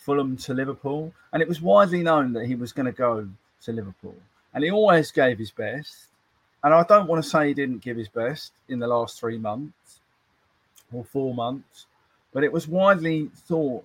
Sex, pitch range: male, 120-155 Hz